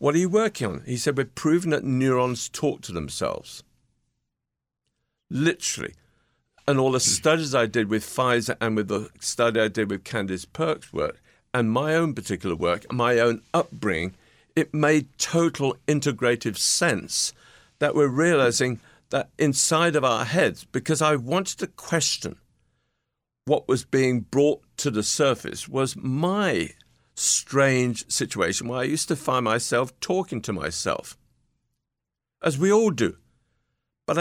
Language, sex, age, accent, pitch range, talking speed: English, male, 50-69, British, 115-150 Hz, 145 wpm